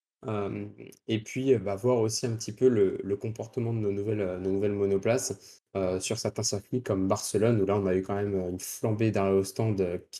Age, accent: 20-39, French